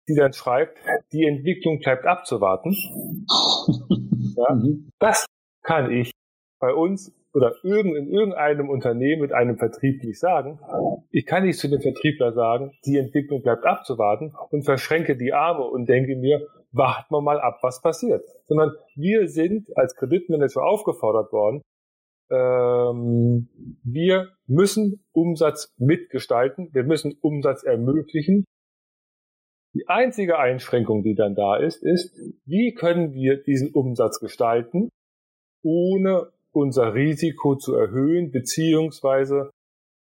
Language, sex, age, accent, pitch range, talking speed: English, male, 40-59, German, 125-165 Hz, 125 wpm